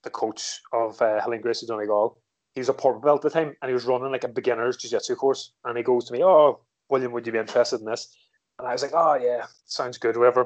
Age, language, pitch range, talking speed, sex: 20-39, English, 115-130 Hz, 265 wpm, male